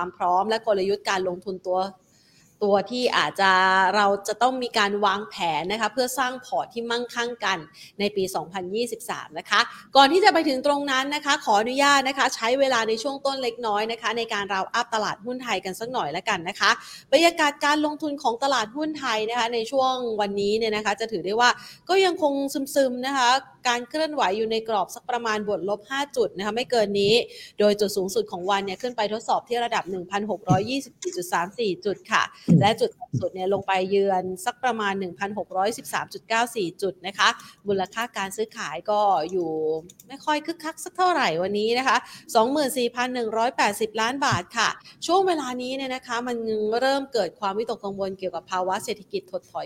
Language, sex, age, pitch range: Thai, female, 30-49, 195-255 Hz